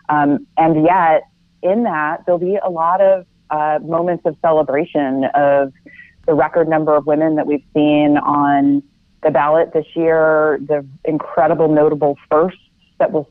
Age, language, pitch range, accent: 30-49, English, 145-170 Hz, American